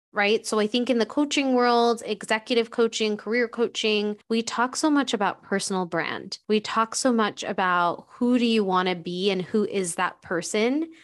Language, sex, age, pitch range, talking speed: English, female, 20-39, 190-235 Hz, 190 wpm